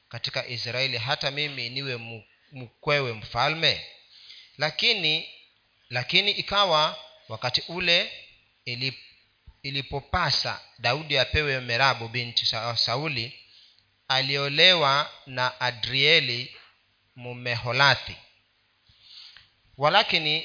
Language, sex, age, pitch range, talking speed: Swahili, male, 40-59, 120-145 Hz, 70 wpm